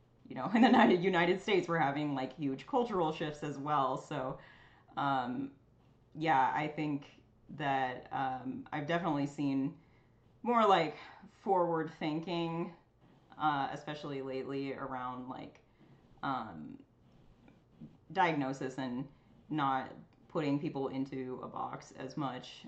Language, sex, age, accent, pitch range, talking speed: English, female, 30-49, American, 130-155 Hz, 115 wpm